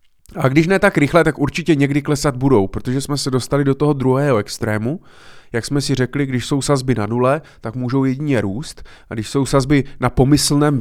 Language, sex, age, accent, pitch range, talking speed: Czech, male, 30-49, native, 120-145 Hz, 205 wpm